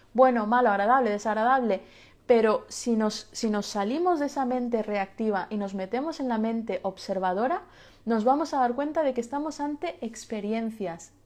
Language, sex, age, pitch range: Spanish, female, 30-49, 195-255 Hz